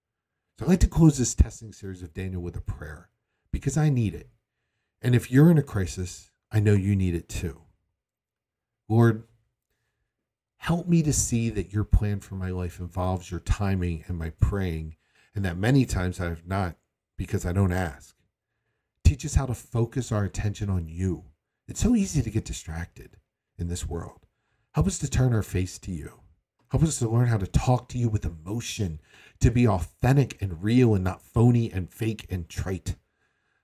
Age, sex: 40-59, male